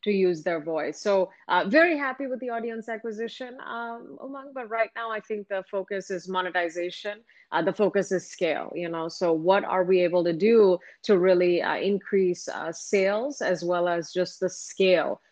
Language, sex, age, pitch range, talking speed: Hindi, female, 30-49, 170-210 Hz, 190 wpm